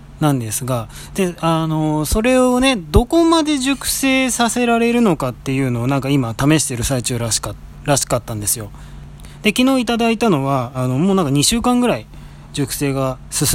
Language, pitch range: Japanese, 125-185 Hz